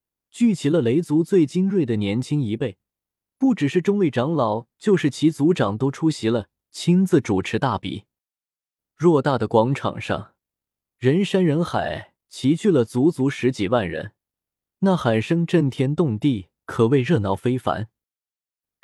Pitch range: 110-165 Hz